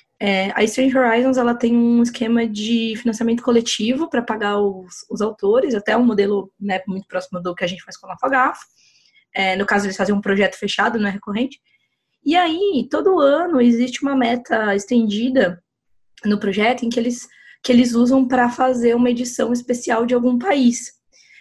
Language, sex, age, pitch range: Portuguese, female, 20-39, 200-250 Hz